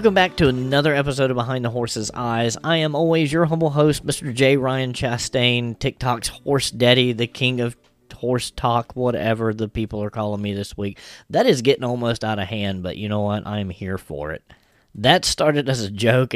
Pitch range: 105-130 Hz